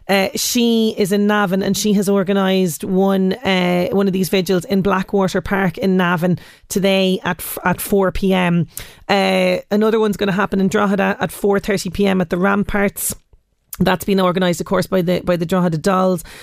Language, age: English, 30-49